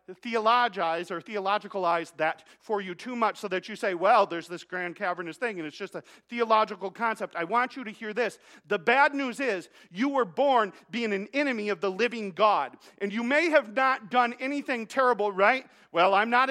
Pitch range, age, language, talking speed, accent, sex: 185-240 Hz, 40-59, English, 205 wpm, American, male